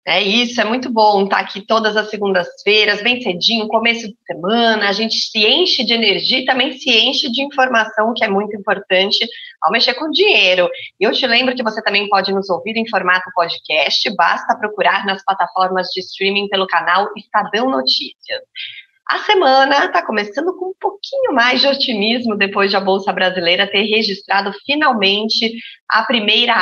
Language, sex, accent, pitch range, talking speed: Portuguese, female, Brazilian, 185-240 Hz, 180 wpm